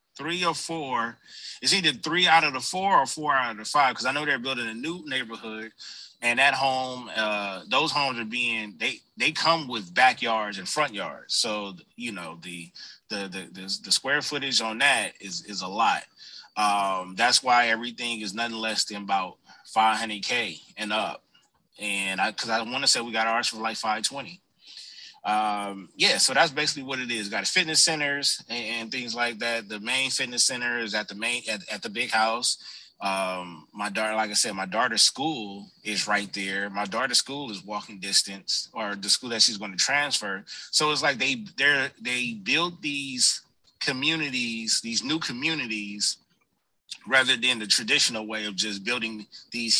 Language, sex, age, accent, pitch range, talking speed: English, male, 20-39, American, 105-140 Hz, 195 wpm